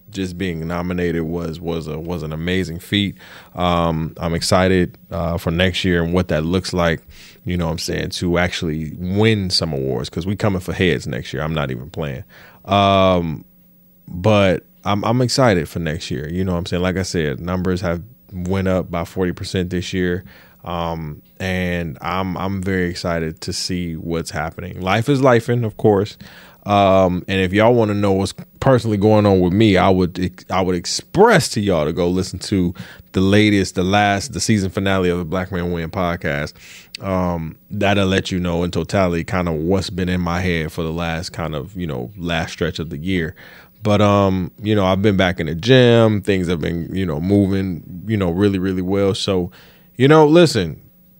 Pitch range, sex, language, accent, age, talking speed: 85-100 Hz, male, English, American, 20-39, 200 wpm